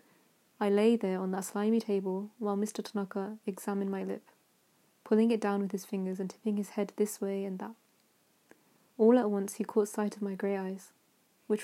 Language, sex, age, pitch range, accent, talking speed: English, female, 20-39, 195-220 Hz, British, 195 wpm